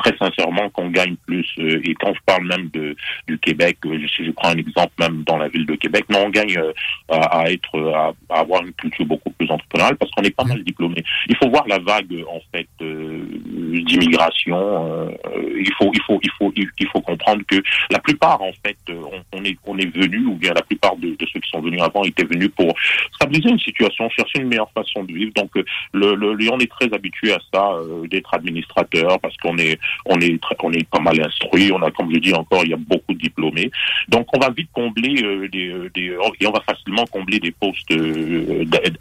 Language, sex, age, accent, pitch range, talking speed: French, male, 40-59, French, 80-100 Hz, 230 wpm